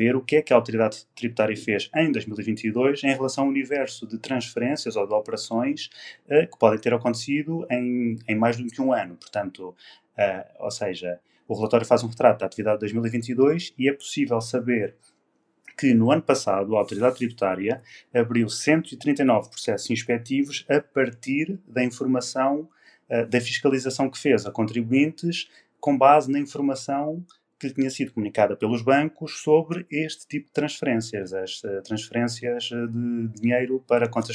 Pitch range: 110-135 Hz